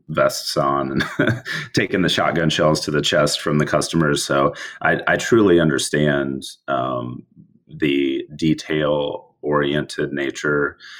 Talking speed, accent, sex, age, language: 125 wpm, American, male, 30-49, English